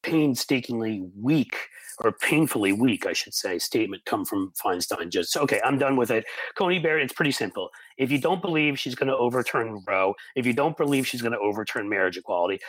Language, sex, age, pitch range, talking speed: English, male, 40-59, 110-150 Hz, 200 wpm